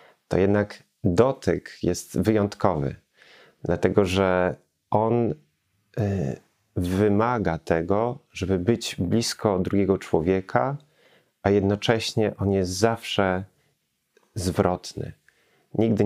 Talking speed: 80 wpm